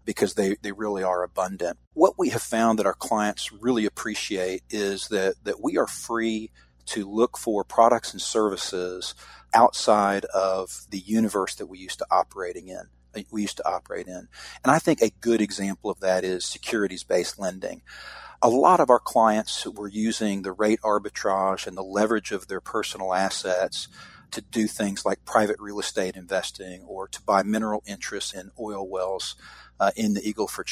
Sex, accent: male, American